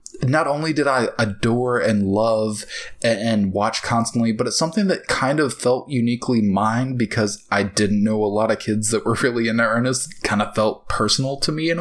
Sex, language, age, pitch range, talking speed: male, English, 20-39, 105-130 Hz, 200 wpm